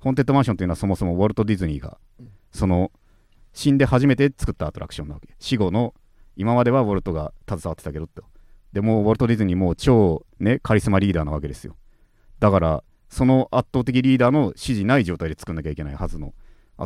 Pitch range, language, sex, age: 85-115 Hz, Japanese, male, 40-59